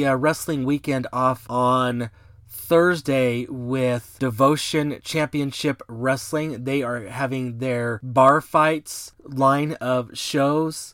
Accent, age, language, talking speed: American, 30-49, English, 105 wpm